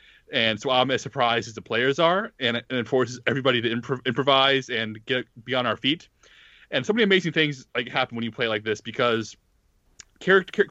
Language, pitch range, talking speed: English, 115-140 Hz, 200 wpm